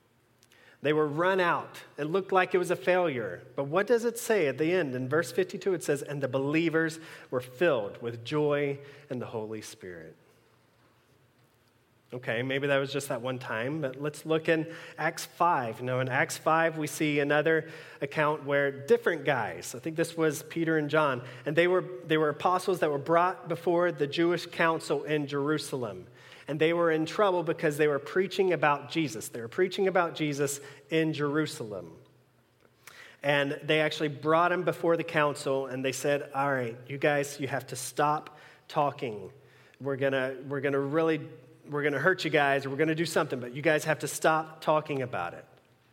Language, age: English, 30-49